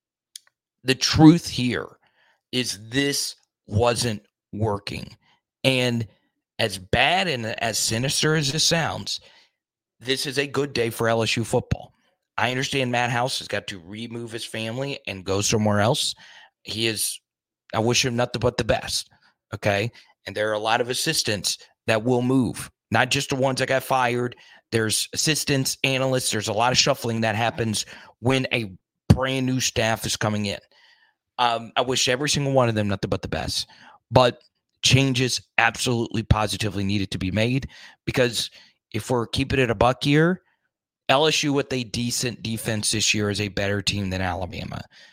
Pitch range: 105-130 Hz